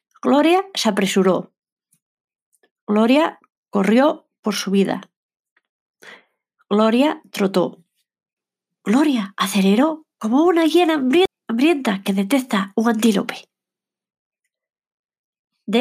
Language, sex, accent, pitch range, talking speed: Spanish, female, Spanish, 205-285 Hz, 80 wpm